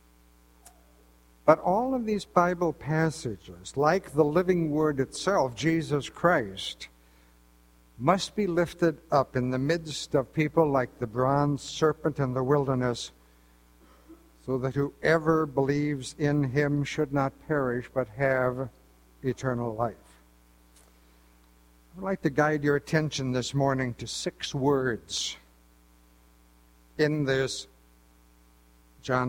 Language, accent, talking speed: English, American, 115 wpm